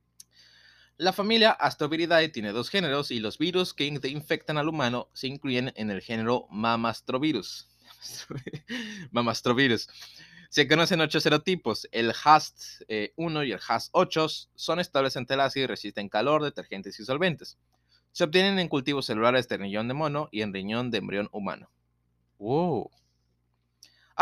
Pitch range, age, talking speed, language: 105-155 Hz, 20-39, 140 wpm, Spanish